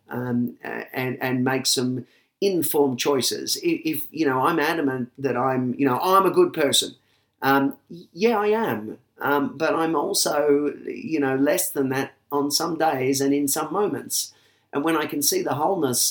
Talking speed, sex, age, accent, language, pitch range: 180 wpm, male, 40-59, Australian, English, 120-145 Hz